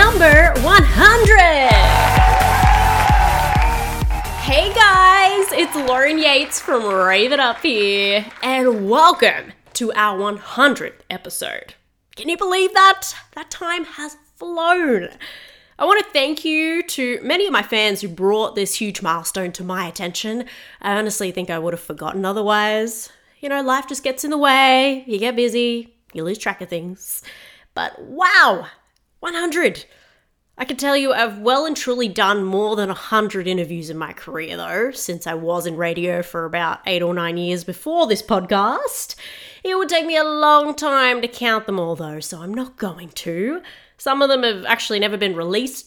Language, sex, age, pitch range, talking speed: English, female, 20-39, 190-300 Hz, 165 wpm